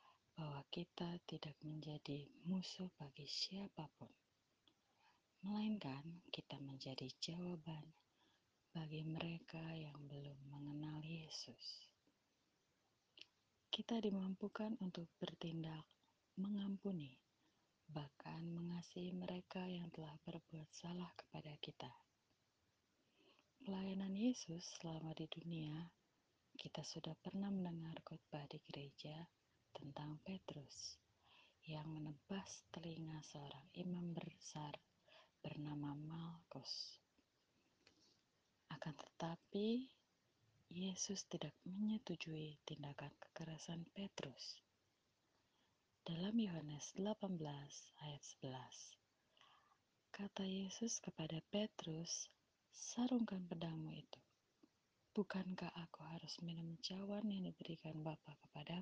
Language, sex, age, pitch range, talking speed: Indonesian, female, 30-49, 150-185 Hz, 85 wpm